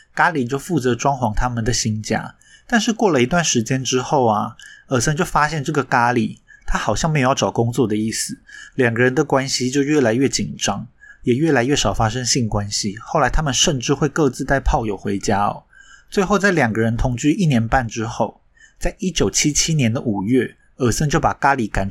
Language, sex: Chinese, male